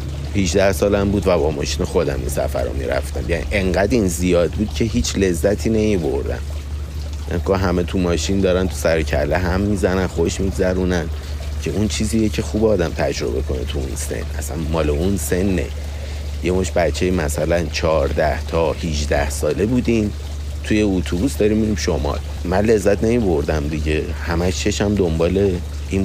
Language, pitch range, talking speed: Persian, 75-95 Hz, 160 wpm